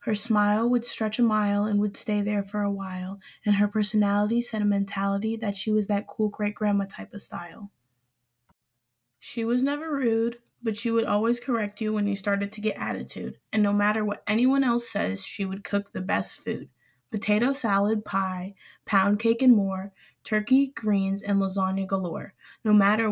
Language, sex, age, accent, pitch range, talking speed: English, female, 10-29, American, 180-215 Hz, 185 wpm